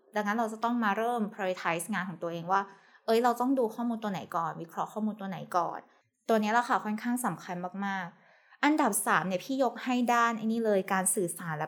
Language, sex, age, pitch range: Thai, female, 20-39, 190-245 Hz